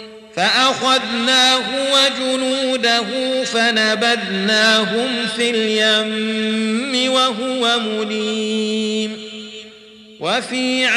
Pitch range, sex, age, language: 220-255 Hz, male, 40-59, Arabic